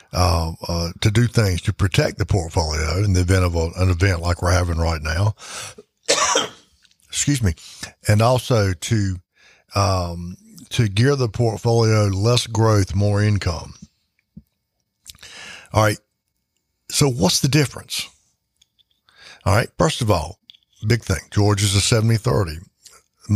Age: 60-79